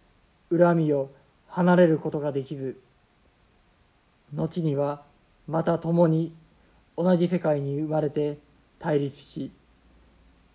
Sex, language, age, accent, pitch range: male, Japanese, 50-69, native, 135-160 Hz